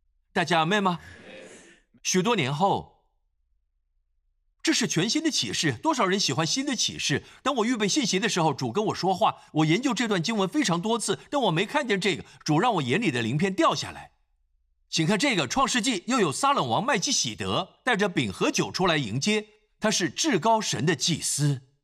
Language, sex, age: Chinese, male, 50-69